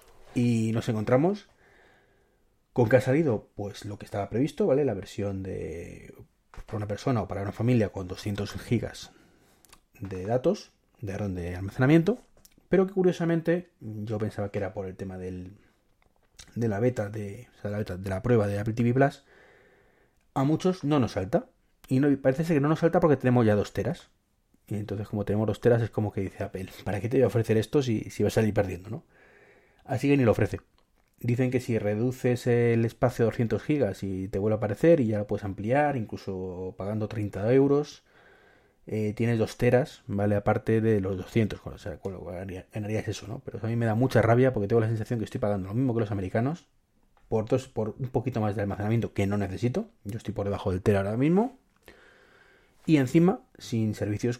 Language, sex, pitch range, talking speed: Spanish, male, 100-125 Hz, 205 wpm